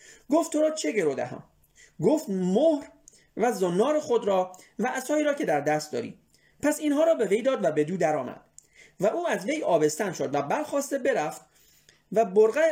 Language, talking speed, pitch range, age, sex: Persian, 195 wpm, 175-280 Hz, 40-59, male